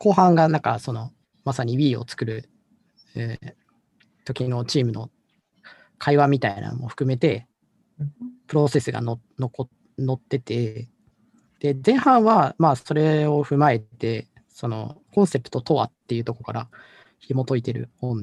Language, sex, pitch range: Japanese, male, 120-150 Hz